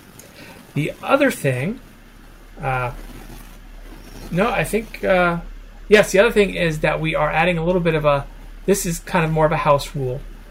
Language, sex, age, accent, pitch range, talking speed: English, male, 30-49, American, 135-170 Hz, 175 wpm